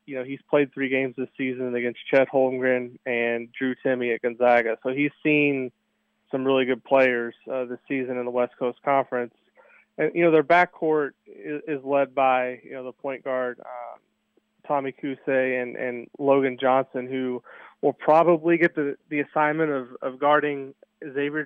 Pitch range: 130-145 Hz